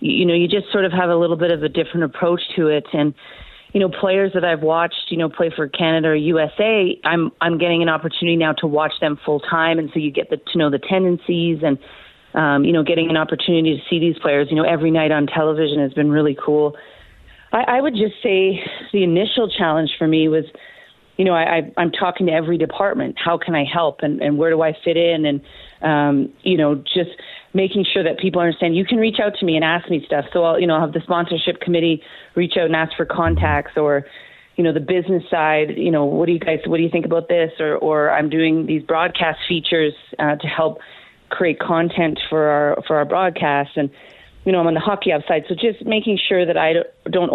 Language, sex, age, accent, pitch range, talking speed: English, female, 30-49, American, 155-175 Hz, 240 wpm